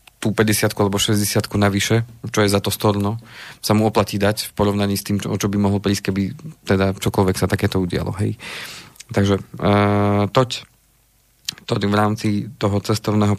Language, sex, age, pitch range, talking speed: Slovak, male, 40-59, 100-115 Hz, 175 wpm